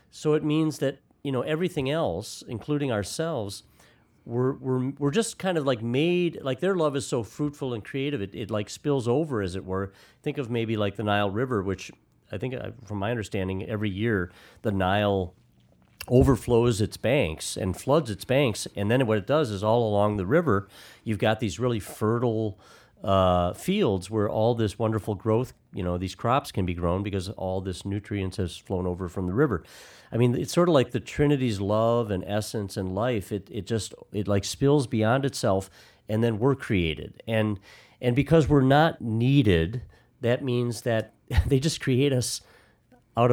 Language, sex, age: English, male, 40-59